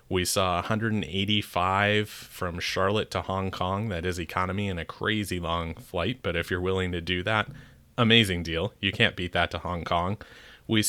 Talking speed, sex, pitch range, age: 180 wpm, male, 90-105 Hz, 30-49